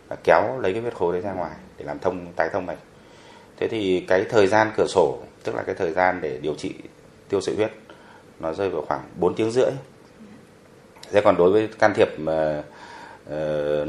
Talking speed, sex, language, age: 205 wpm, male, Vietnamese, 30-49